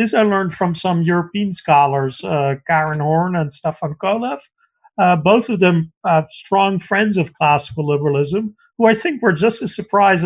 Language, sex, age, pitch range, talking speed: English, male, 40-59, 165-210 Hz, 175 wpm